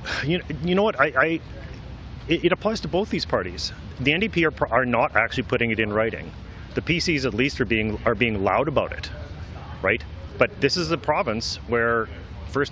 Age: 30-49